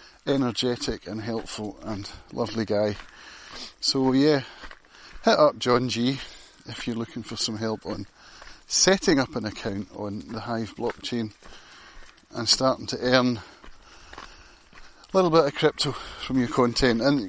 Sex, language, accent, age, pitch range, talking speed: male, English, British, 30-49, 110-130 Hz, 140 wpm